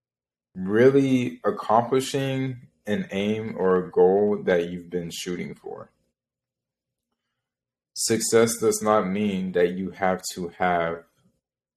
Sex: male